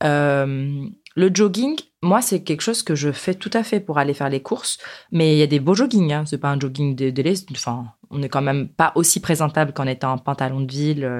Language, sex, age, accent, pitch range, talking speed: French, female, 20-39, French, 145-195 Hz, 245 wpm